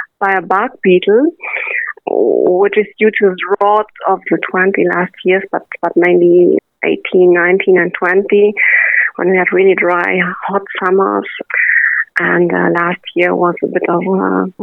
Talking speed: 155 wpm